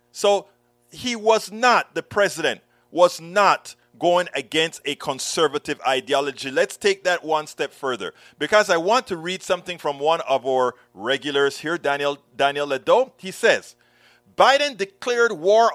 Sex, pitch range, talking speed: male, 180-240 Hz, 150 wpm